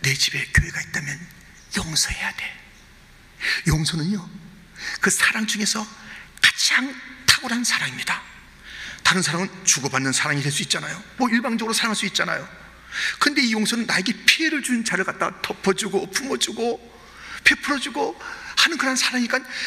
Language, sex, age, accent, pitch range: Korean, male, 40-59, native, 175-260 Hz